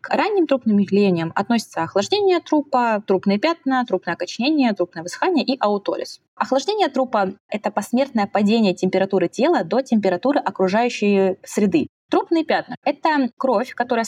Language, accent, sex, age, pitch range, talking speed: Russian, native, female, 20-39, 185-255 Hz, 130 wpm